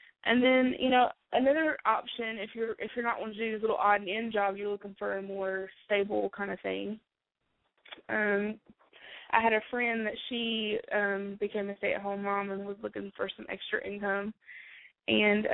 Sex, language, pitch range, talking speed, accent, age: female, English, 200-220 Hz, 195 wpm, American, 20-39